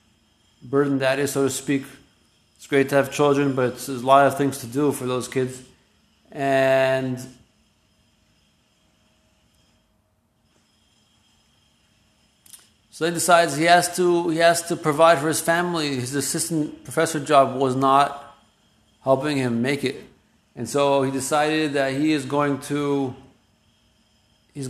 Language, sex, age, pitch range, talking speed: English, male, 40-59, 125-150 Hz, 130 wpm